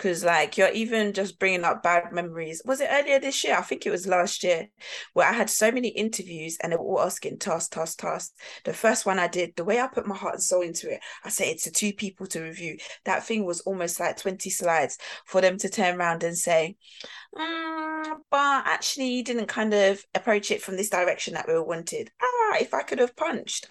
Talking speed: 230 wpm